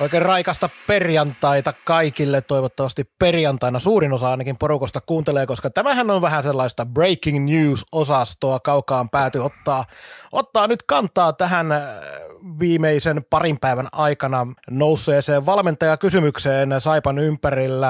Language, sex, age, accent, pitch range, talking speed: Finnish, male, 30-49, native, 135-180 Hz, 110 wpm